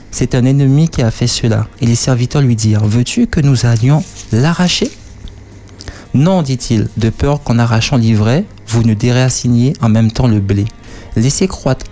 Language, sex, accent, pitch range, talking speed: French, male, French, 105-130 Hz, 190 wpm